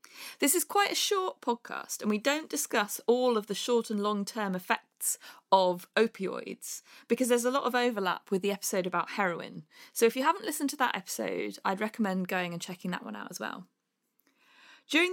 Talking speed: 195 wpm